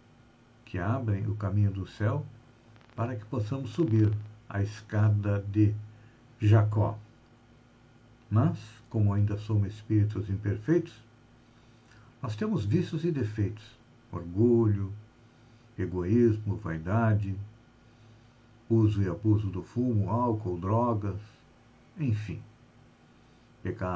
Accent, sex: Brazilian, male